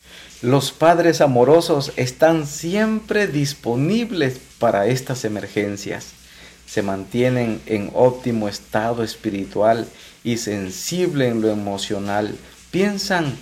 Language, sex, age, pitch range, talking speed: Spanish, male, 50-69, 110-145 Hz, 95 wpm